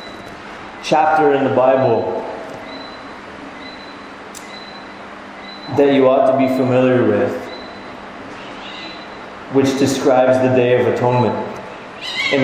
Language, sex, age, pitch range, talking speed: English, male, 30-49, 125-145 Hz, 85 wpm